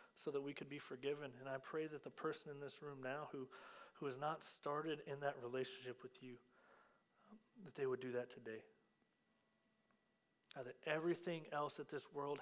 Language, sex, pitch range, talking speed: English, male, 135-155 Hz, 190 wpm